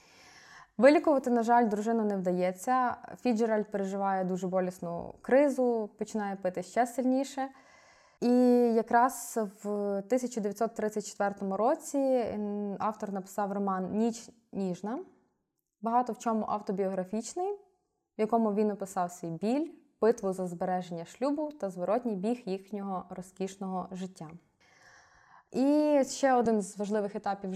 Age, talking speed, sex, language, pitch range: 20-39, 115 wpm, female, Ukrainian, 200-250 Hz